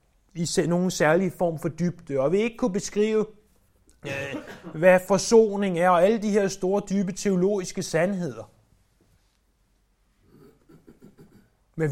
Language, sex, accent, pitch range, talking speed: Danish, male, native, 160-210 Hz, 120 wpm